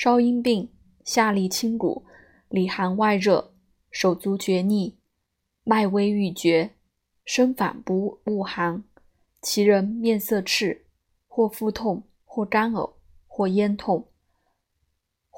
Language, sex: Chinese, female